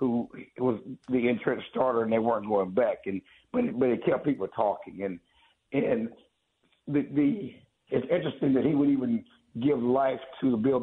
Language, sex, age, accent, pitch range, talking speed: English, male, 60-79, American, 105-130 Hz, 175 wpm